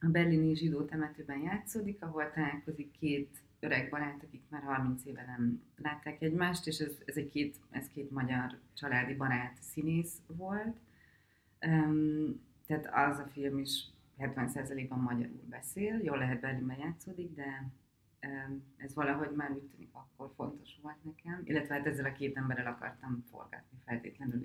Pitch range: 135-160 Hz